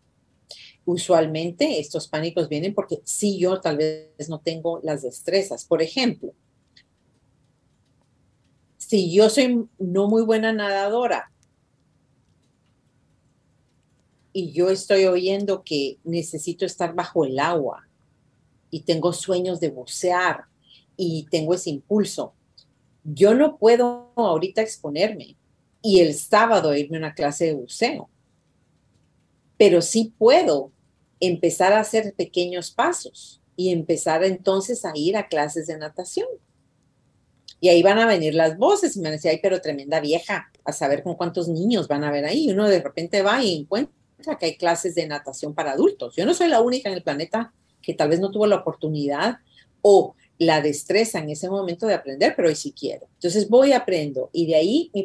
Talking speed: 160 wpm